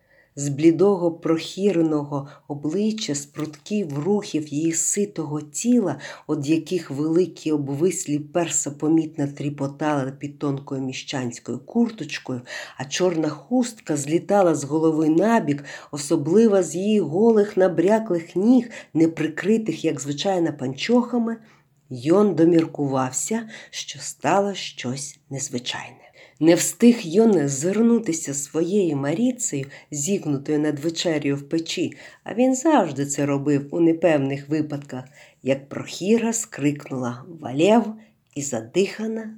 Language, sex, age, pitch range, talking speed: Ukrainian, female, 50-69, 145-185 Hz, 105 wpm